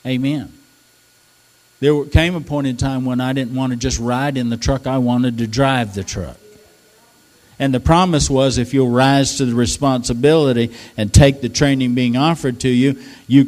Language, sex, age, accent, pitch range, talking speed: English, male, 60-79, American, 120-150 Hz, 185 wpm